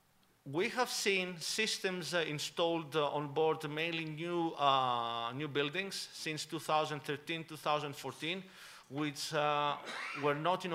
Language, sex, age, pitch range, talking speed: English, male, 40-59, 135-165 Hz, 115 wpm